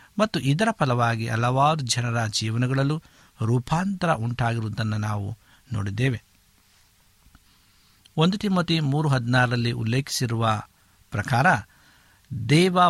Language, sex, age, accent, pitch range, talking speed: Kannada, male, 60-79, native, 105-145 Hz, 75 wpm